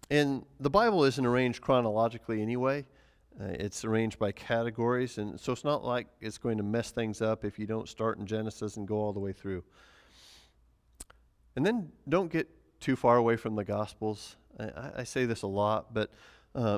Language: English